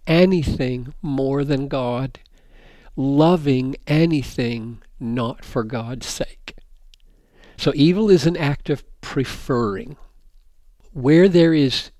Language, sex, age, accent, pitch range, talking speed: English, male, 60-79, American, 125-160 Hz, 100 wpm